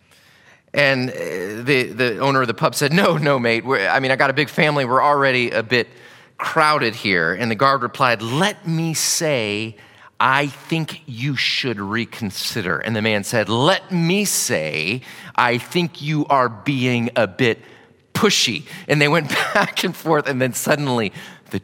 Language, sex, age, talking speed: English, male, 30-49, 170 wpm